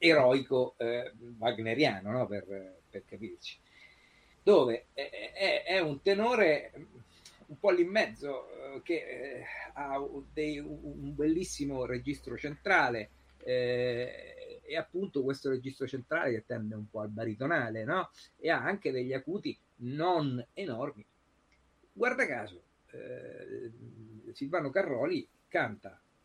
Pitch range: 110-155 Hz